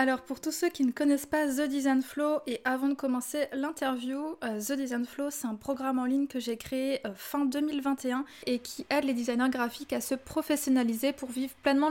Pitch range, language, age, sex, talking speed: 255-285 Hz, French, 20-39, female, 205 wpm